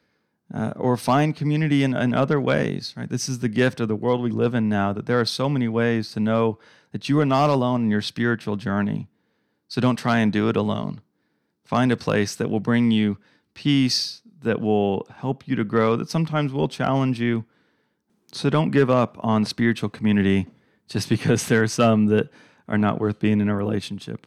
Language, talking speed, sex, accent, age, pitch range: English, 205 wpm, male, American, 30-49, 110-135 Hz